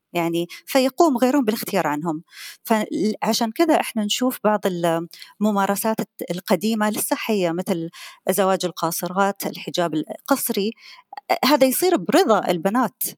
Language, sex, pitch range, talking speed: Arabic, female, 185-270 Hz, 100 wpm